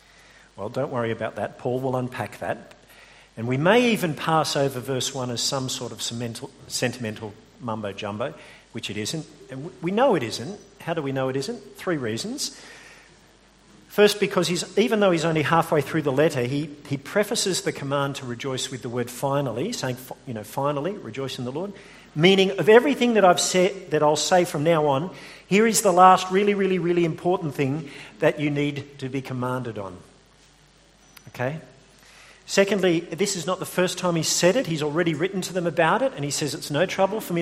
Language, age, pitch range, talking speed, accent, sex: English, 50-69, 130-185 Hz, 195 wpm, Australian, male